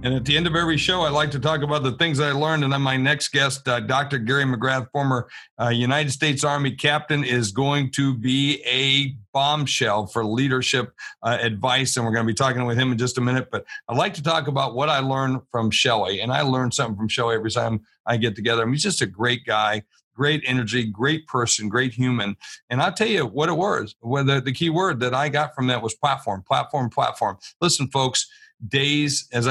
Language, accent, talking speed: English, American, 230 wpm